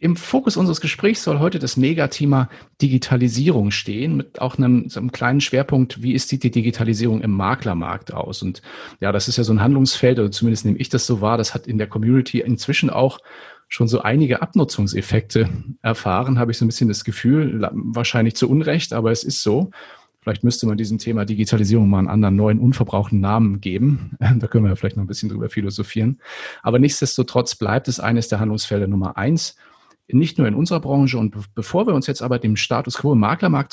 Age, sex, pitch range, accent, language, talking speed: 40-59, male, 110-140 Hz, German, German, 200 wpm